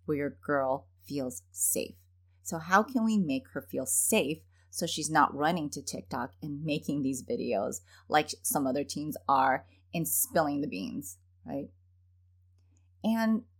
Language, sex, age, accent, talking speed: English, female, 30-49, American, 145 wpm